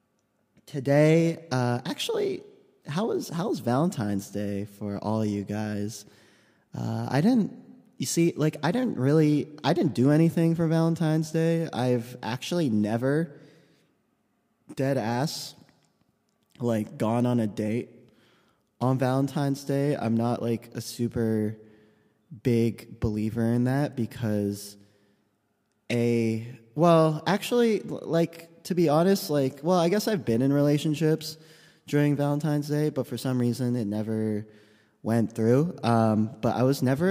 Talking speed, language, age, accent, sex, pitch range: 135 wpm, English, 20-39, American, male, 105-145 Hz